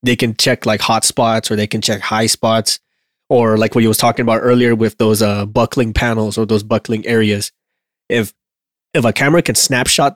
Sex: male